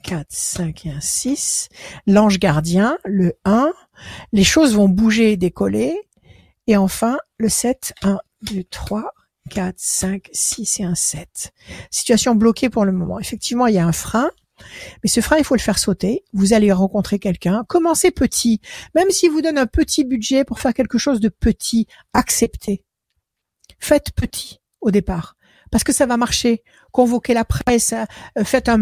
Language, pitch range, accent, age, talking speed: French, 205-255 Hz, French, 60-79, 170 wpm